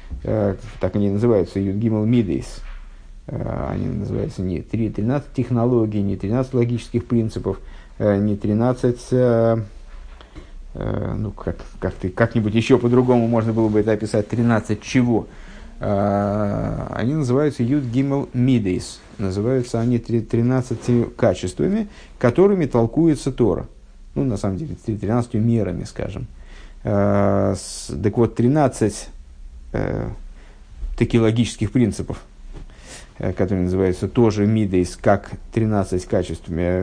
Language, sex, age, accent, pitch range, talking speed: Russian, male, 50-69, native, 95-120 Hz, 100 wpm